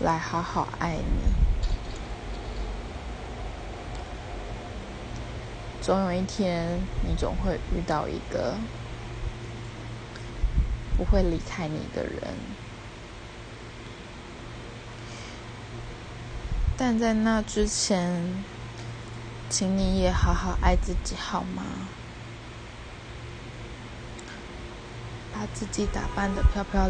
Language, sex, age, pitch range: Chinese, female, 20-39, 115-175 Hz